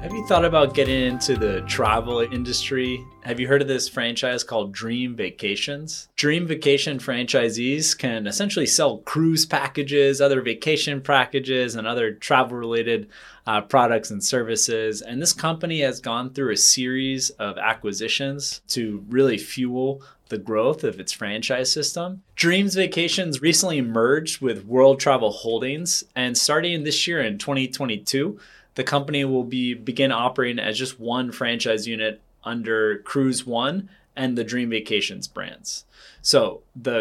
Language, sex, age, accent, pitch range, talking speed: English, male, 20-39, American, 120-145 Hz, 145 wpm